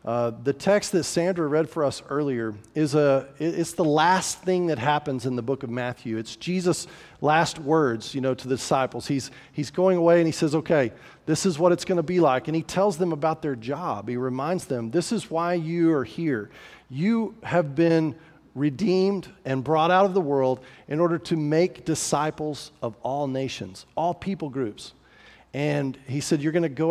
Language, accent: English, American